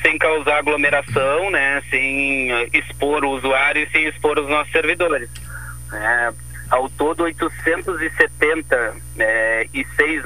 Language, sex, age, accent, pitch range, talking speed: Portuguese, male, 30-49, Brazilian, 110-140 Hz, 125 wpm